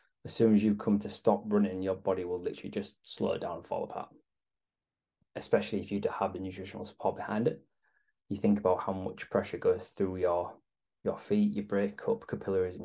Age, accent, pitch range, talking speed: 20-39, British, 95-155 Hz, 205 wpm